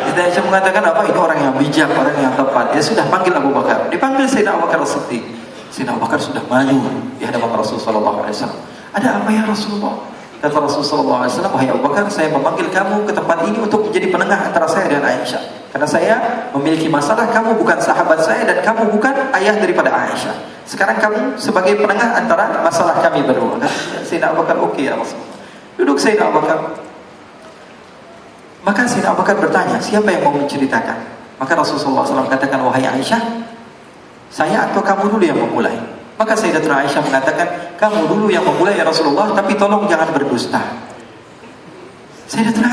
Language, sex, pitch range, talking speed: Indonesian, male, 170-230 Hz, 165 wpm